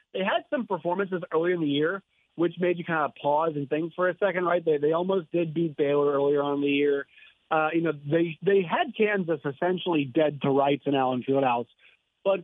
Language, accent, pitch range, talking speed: English, American, 145-185 Hz, 220 wpm